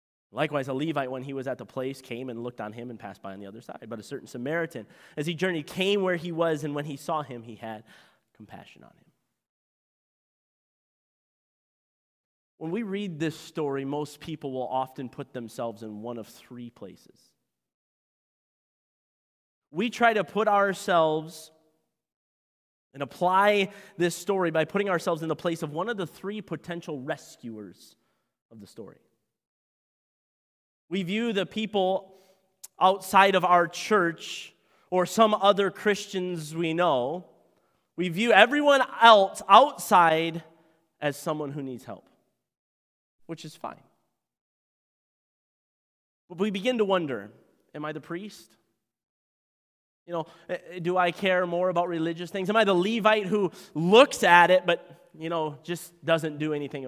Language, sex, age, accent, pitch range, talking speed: English, male, 30-49, American, 140-190 Hz, 150 wpm